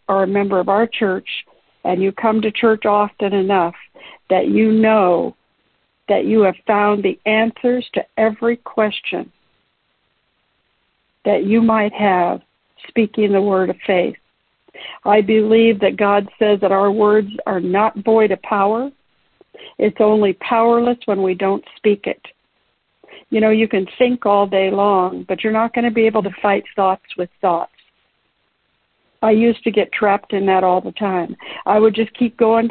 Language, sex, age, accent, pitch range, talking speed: English, female, 60-79, American, 195-225 Hz, 165 wpm